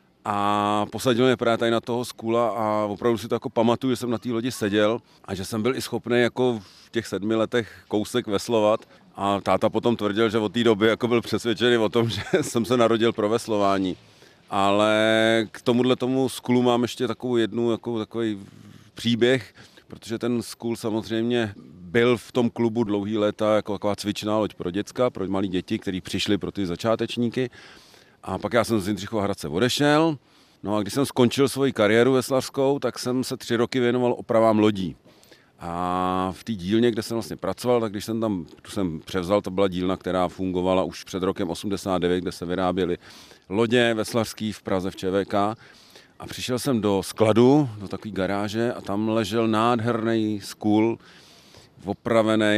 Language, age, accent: Czech, 40-59, native